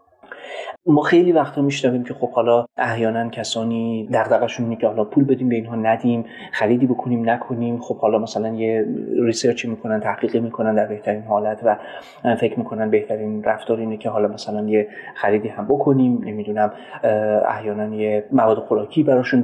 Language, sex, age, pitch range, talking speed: Persian, male, 30-49, 110-120 Hz, 160 wpm